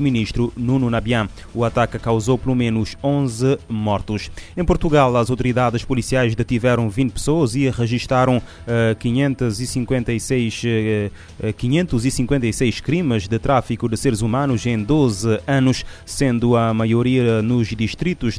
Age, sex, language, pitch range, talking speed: 20-39, male, Portuguese, 115-130 Hz, 125 wpm